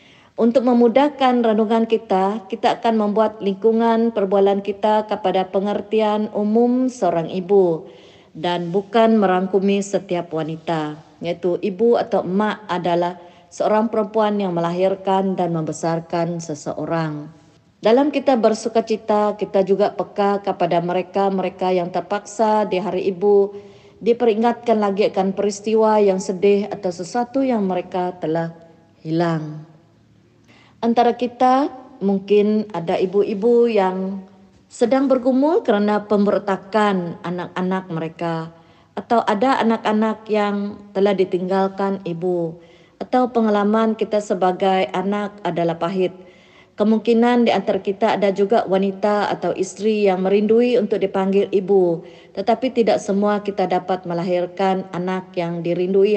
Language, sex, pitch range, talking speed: Malay, female, 180-215 Hz, 115 wpm